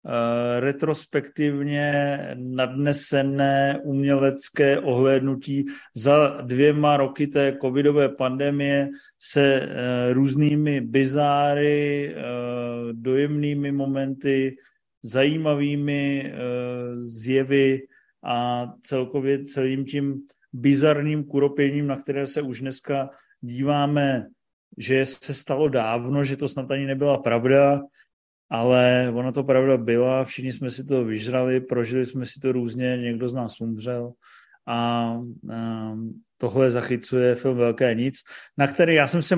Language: Czech